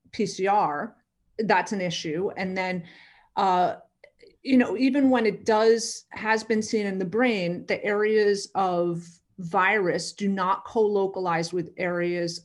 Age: 30-49